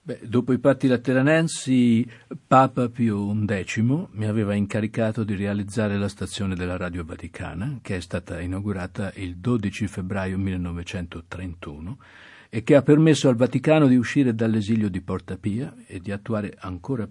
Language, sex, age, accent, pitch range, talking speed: Italian, male, 50-69, native, 95-125 Hz, 145 wpm